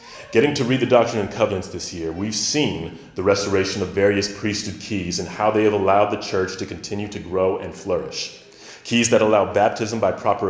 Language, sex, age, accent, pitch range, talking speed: English, male, 30-49, American, 95-115 Hz, 205 wpm